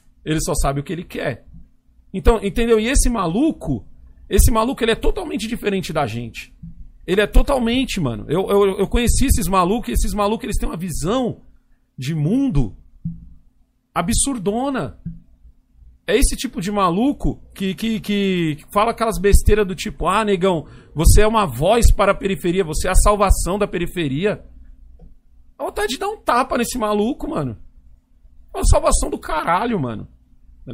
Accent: Brazilian